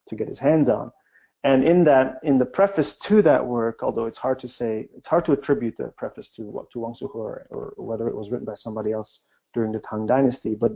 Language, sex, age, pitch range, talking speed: English, male, 30-49, 115-135 Hz, 245 wpm